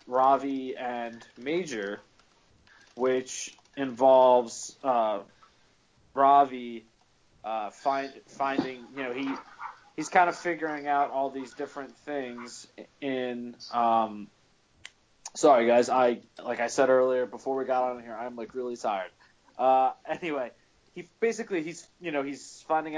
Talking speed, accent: 130 wpm, American